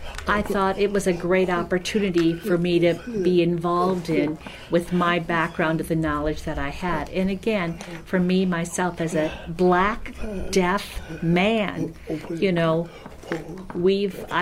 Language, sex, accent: English, female, American